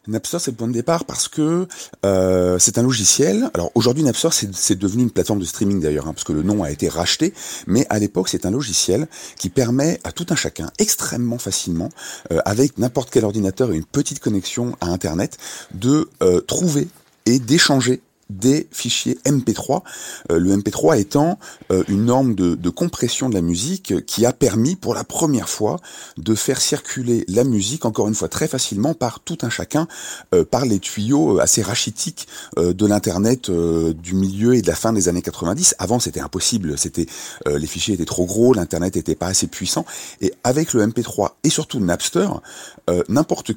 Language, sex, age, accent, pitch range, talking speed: French, male, 30-49, French, 95-135 Hz, 195 wpm